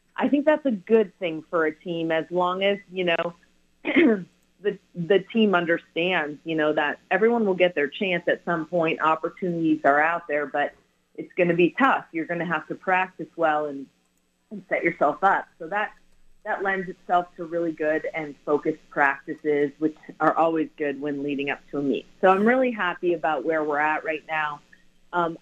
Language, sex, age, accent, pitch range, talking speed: English, female, 30-49, American, 155-190 Hz, 195 wpm